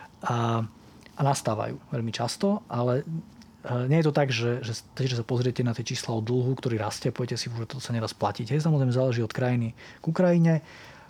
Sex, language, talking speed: male, Slovak, 185 wpm